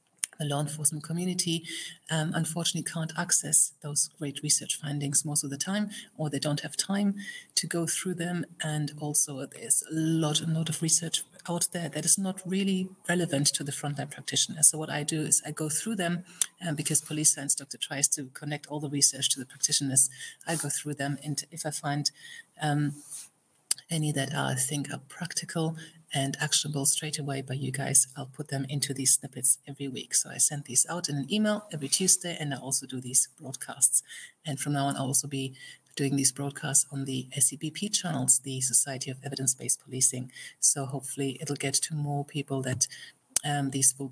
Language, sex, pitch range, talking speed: English, female, 140-160 Hz, 195 wpm